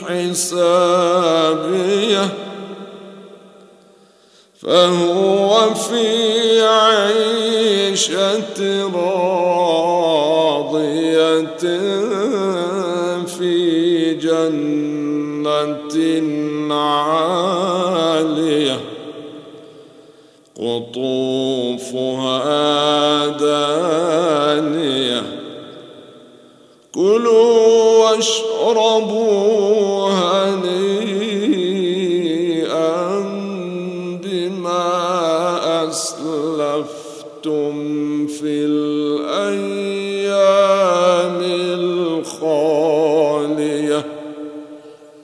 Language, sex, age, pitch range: Arabic, male, 50-69, 150-200 Hz